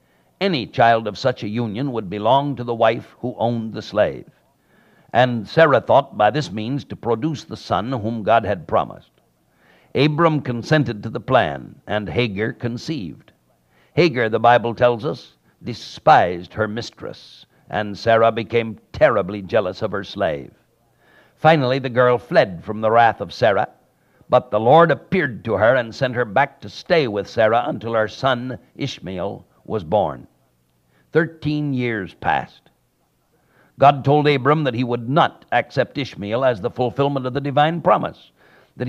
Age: 60-79